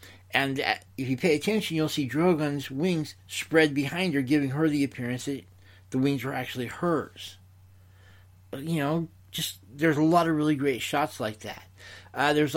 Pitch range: 95-145 Hz